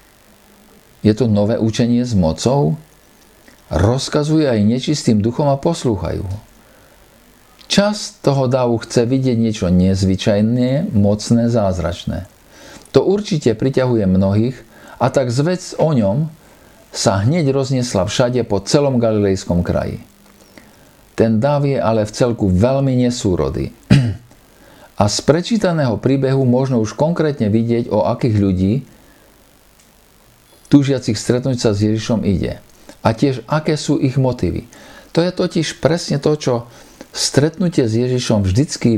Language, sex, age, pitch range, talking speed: Slovak, male, 50-69, 105-135 Hz, 120 wpm